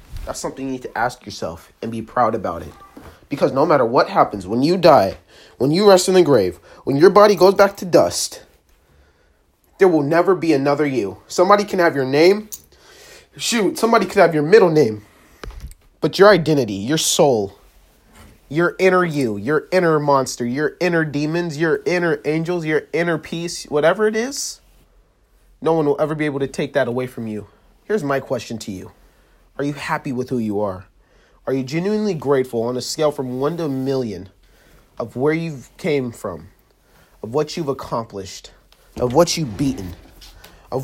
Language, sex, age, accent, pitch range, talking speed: English, male, 30-49, American, 110-170 Hz, 185 wpm